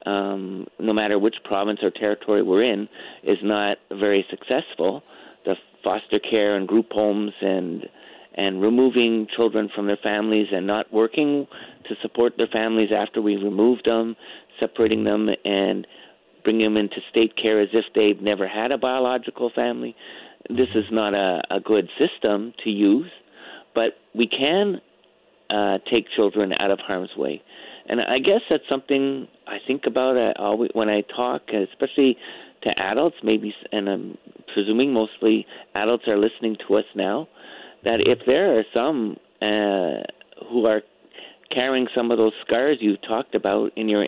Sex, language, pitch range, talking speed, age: male, English, 105-120 Hz, 160 wpm, 50-69